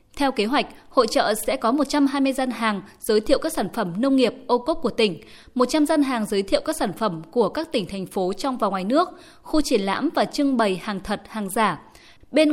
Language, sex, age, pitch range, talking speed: Vietnamese, female, 20-39, 210-280 Hz, 235 wpm